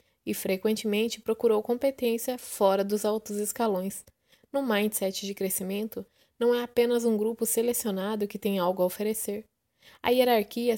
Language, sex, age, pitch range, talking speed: Portuguese, female, 20-39, 195-225 Hz, 140 wpm